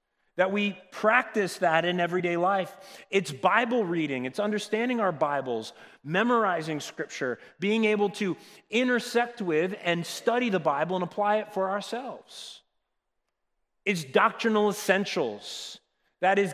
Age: 30-49